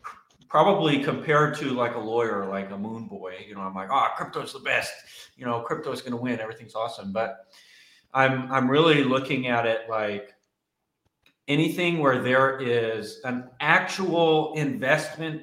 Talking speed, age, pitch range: 165 wpm, 30-49, 115-150 Hz